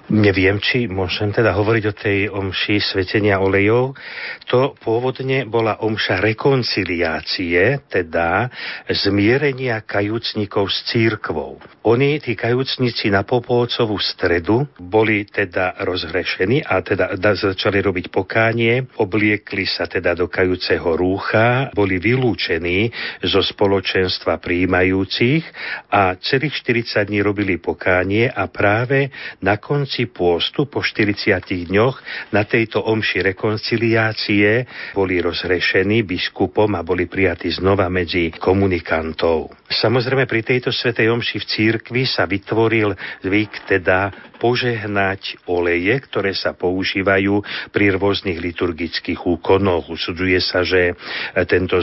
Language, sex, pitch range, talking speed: Slovak, male, 95-115 Hz, 110 wpm